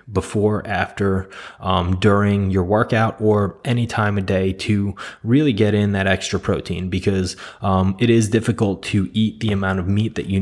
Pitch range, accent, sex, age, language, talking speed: 95-110 Hz, American, male, 20-39, English, 180 wpm